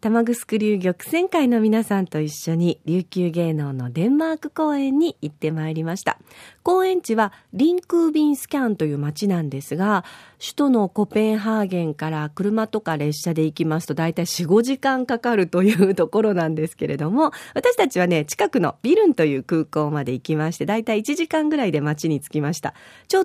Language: Japanese